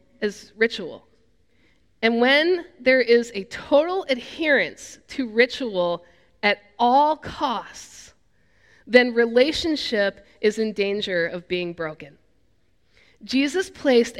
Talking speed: 95 wpm